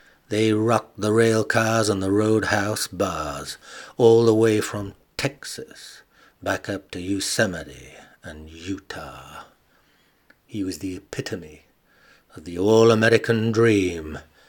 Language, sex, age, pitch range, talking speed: English, male, 60-79, 90-110 Hz, 120 wpm